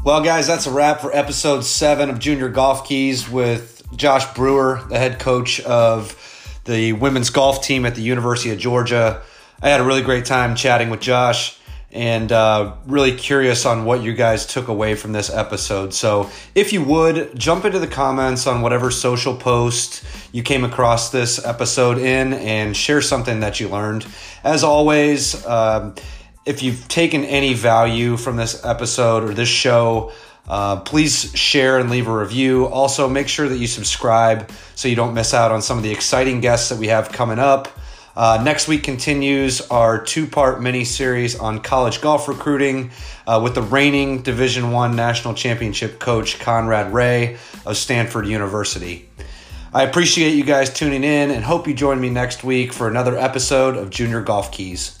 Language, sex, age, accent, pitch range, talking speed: English, male, 30-49, American, 115-135 Hz, 175 wpm